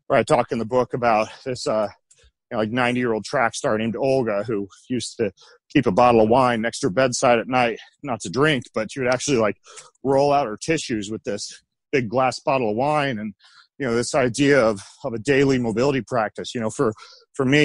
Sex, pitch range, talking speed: male, 115-140 Hz, 225 wpm